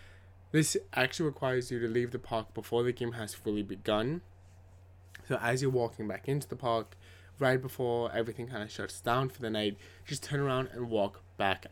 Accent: American